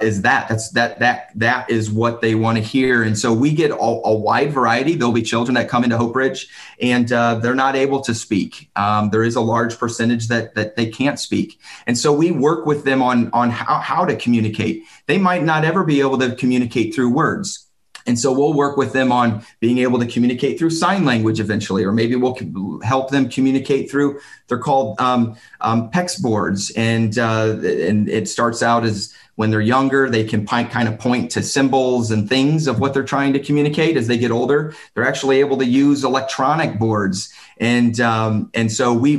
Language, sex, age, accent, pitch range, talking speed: English, male, 30-49, American, 115-135 Hz, 210 wpm